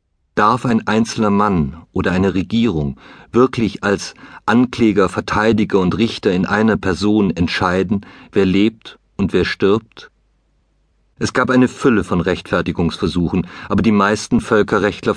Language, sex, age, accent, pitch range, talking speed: German, male, 50-69, German, 90-115 Hz, 125 wpm